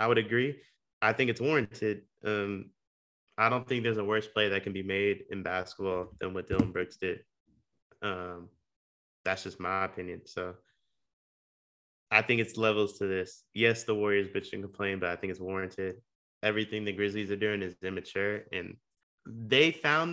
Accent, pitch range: American, 100-135 Hz